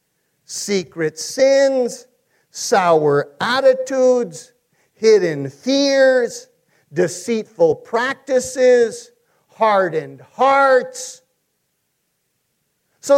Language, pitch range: English, 240-320 Hz